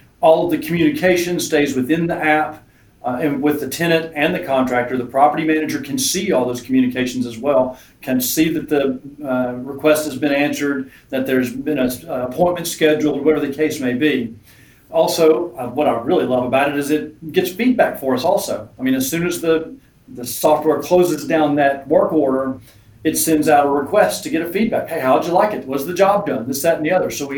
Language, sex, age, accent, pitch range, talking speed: English, male, 40-59, American, 130-170 Hz, 220 wpm